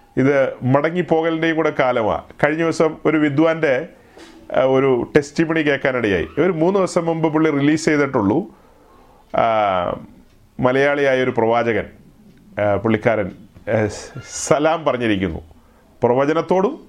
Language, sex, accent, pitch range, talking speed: Malayalam, male, native, 120-185 Hz, 90 wpm